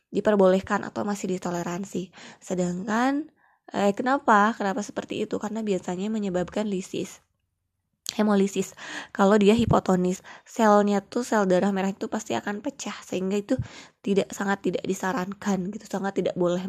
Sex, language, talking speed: female, Indonesian, 135 wpm